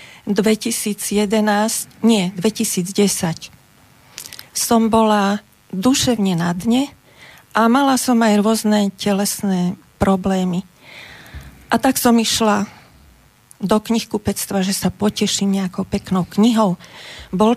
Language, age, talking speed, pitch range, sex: Slovak, 40-59, 100 wpm, 200-245 Hz, female